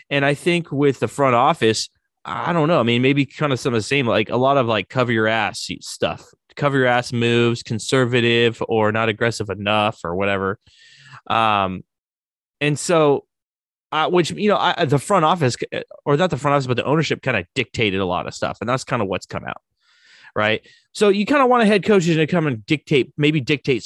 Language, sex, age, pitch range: English, male, 20-39, 110-150 Hz